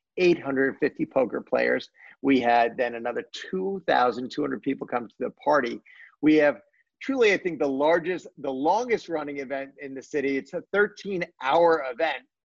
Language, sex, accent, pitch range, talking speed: English, male, American, 125-150 Hz, 155 wpm